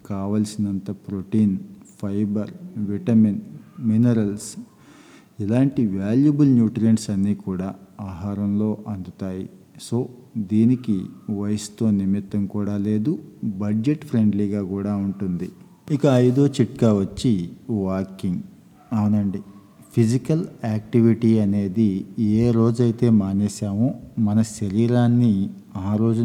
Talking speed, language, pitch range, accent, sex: 80 wpm, Telugu, 100-120 Hz, native, male